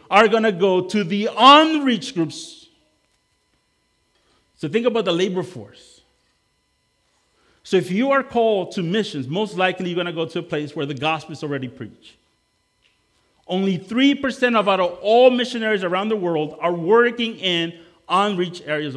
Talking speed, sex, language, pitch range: 160 wpm, male, English, 150-225 Hz